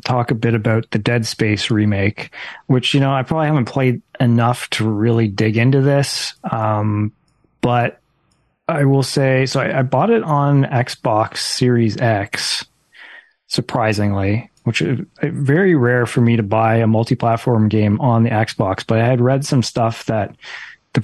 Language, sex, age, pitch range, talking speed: English, male, 30-49, 115-135 Hz, 165 wpm